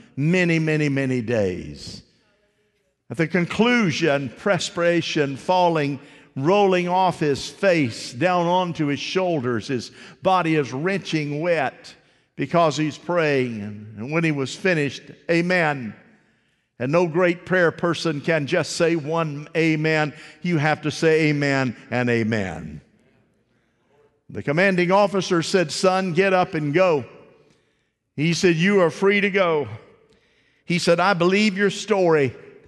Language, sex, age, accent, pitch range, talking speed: English, male, 50-69, American, 150-200 Hz, 130 wpm